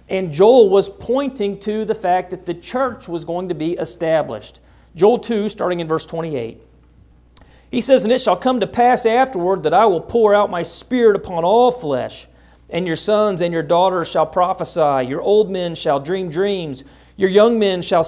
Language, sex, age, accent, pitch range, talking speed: English, male, 40-59, American, 160-205 Hz, 195 wpm